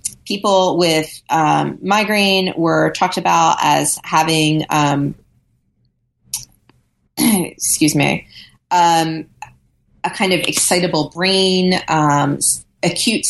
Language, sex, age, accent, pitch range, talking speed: English, female, 30-49, American, 155-190 Hz, 90 wpm